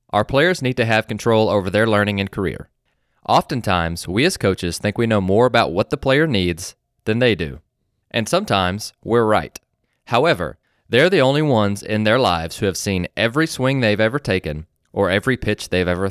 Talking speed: 195 wpm